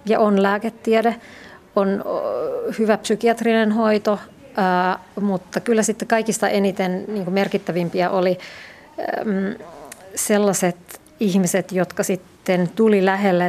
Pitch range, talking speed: 185-220 Hz, 90 wpm